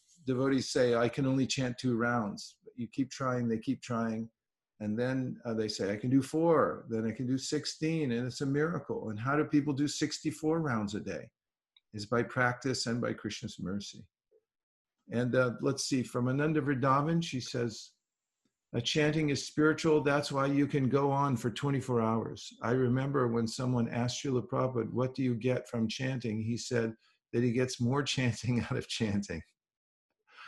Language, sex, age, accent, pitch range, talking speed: English, male, 50-69, American, 120-145 Hz, 185 wpm